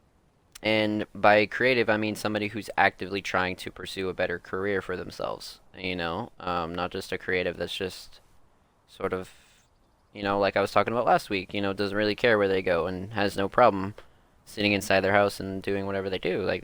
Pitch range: 90-105 Hz